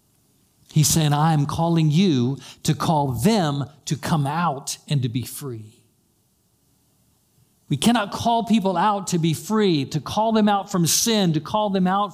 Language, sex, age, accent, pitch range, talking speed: English, male, 50-69, American, 130-195 Hz, 165 wpm